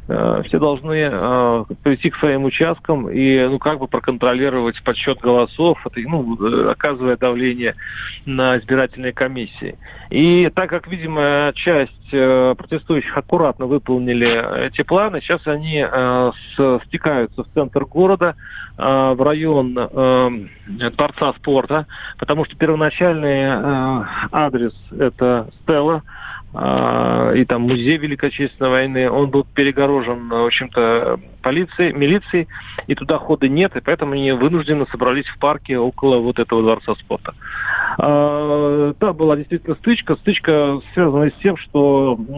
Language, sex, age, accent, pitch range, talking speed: Russian, male, 40-59, native, 125-155 Hz, 130 wpm